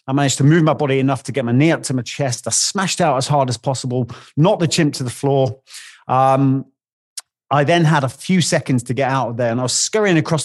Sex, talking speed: male, 260 wpm